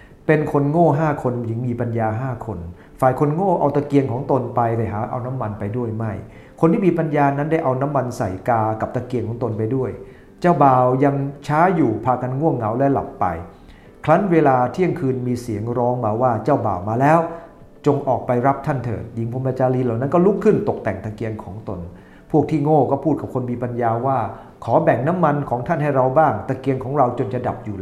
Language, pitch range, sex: English, 120-155 Hz, male